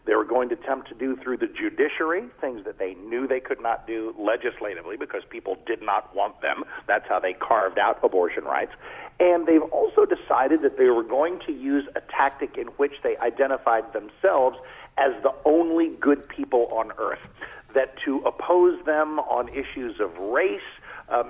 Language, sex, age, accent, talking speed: English, male, 50-69, American, 185 wpm